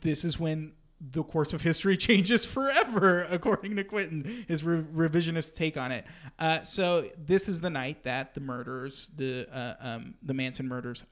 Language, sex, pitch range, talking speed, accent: English, male, 125-155 Hz, 180 wpm, American